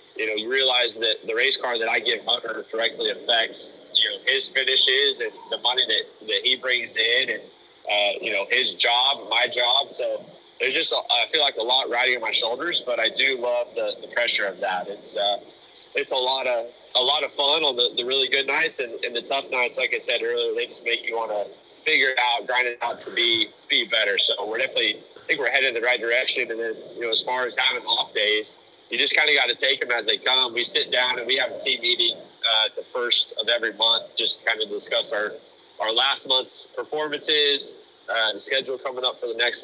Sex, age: male, 30-49